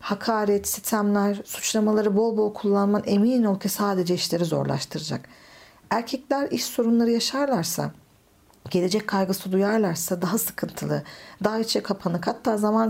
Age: 50-69